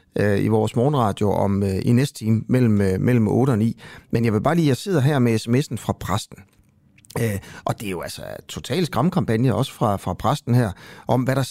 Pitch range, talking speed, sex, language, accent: 100-140 Hz, 210 wpm, male, Danish, native